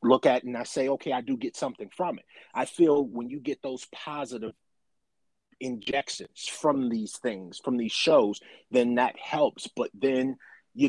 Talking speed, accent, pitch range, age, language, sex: 180 wpm, American, 120-140 Hz, 30-49, English, male